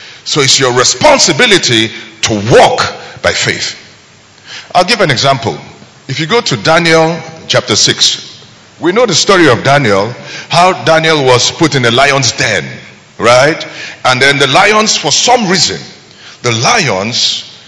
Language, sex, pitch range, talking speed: English, male, 130-200 Hz, 145 wpm